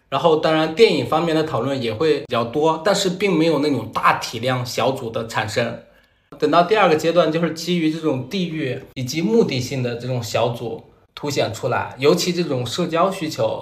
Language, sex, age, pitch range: Chinese, male, 20-39, 120-160 Hz